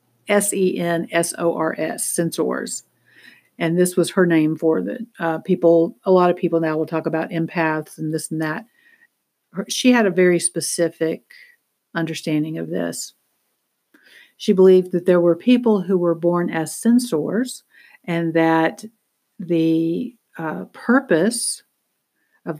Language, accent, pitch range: English, American, 160-195 Hz